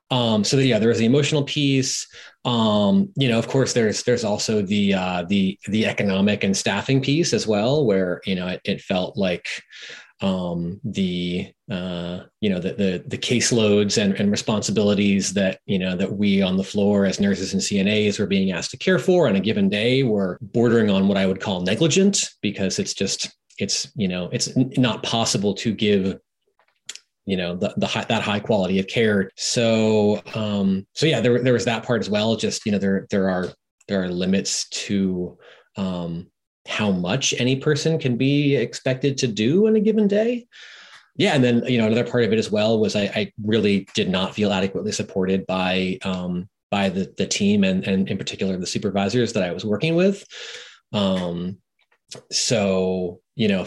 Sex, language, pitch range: male, English, 95-125 Hz